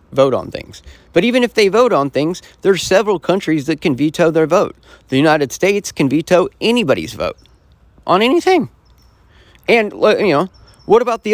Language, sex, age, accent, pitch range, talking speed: English, male, 30-49, American, 145-225 Hz, 175 wpm